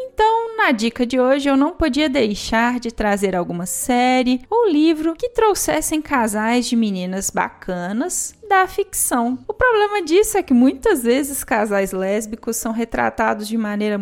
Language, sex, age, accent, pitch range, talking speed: Portuguese, female, 10-29, Brazilian, 205-280 Hz, 155 wpm